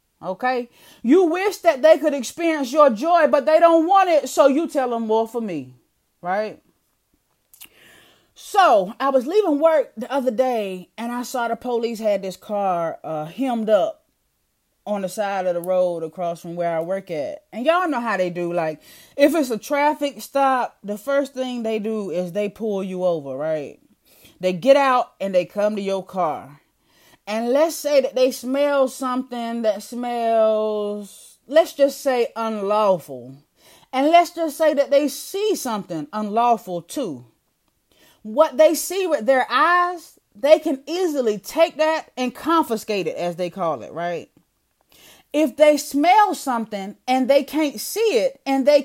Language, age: English, 30-49